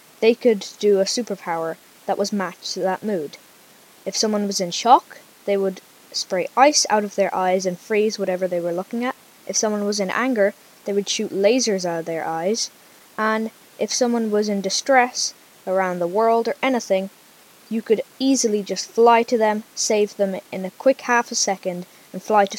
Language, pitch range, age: English, 195-245 Hz, 10-29